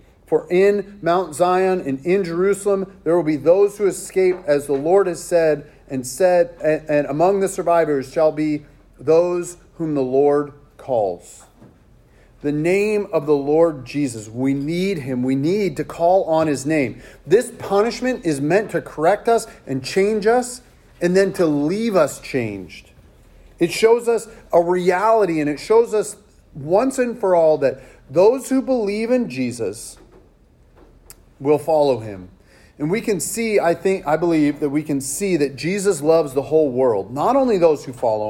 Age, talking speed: 40-59, 170 wpm